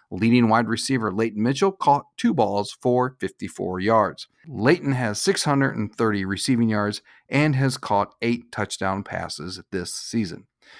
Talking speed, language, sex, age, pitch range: 135 wpm, English, male, 40-59, 105-130 Hz